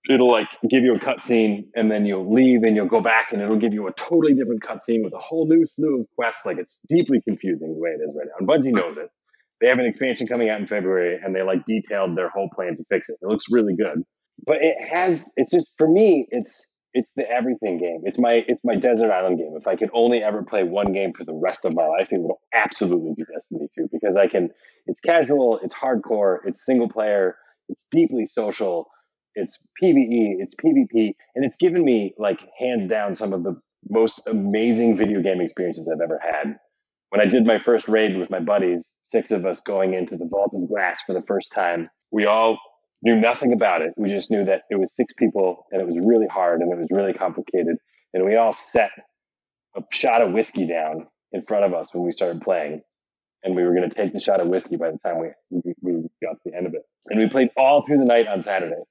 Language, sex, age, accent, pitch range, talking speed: English, male, 30-49, American, 95-140 Hz, 240 wpm